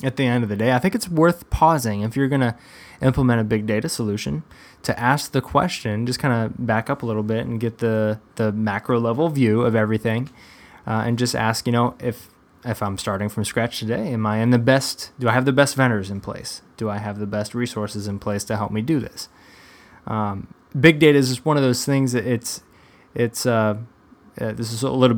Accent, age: American, 20-39